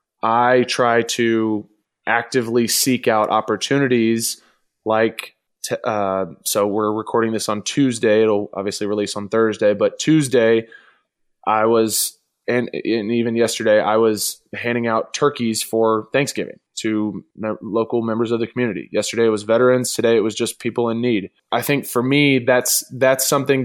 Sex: male